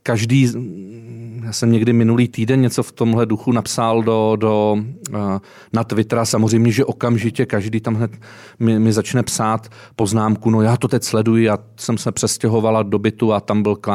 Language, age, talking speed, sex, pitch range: Czech, 30-49, 170 wpm, male, 110-125 Hz